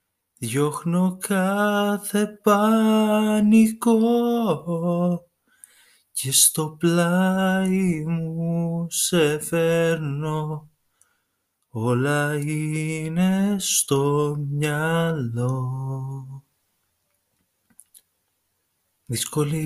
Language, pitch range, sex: Greek, 150-180 Hz, male